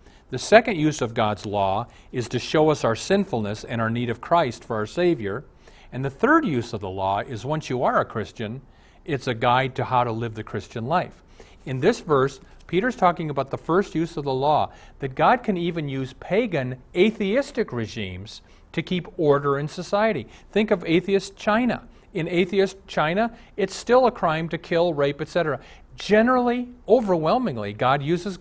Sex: male